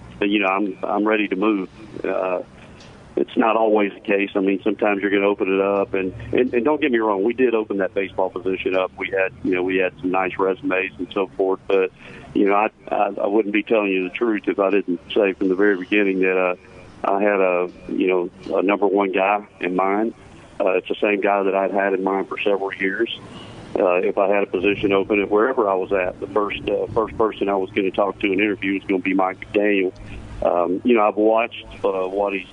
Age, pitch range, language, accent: 40-59, 95-105 Hz, English, American